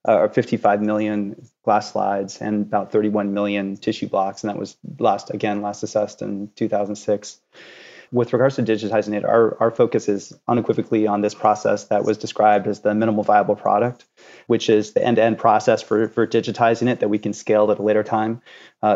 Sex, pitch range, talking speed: male, 105-115 Hz, 185 wpm